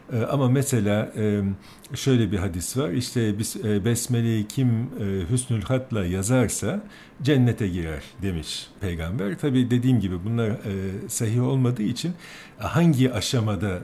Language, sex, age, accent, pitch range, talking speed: English, male, 60-79, Turkish, 95-125 Hz, 110 wpm